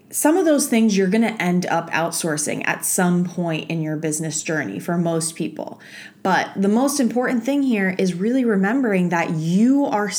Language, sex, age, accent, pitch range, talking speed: English, female, 20-39, American, 170-210 Hz, 190 wpm